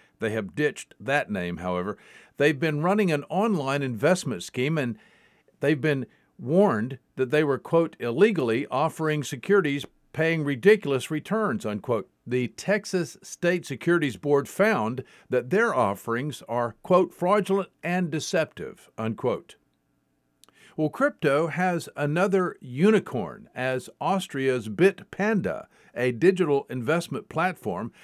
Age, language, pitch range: 50-69, English, 130-180 Hz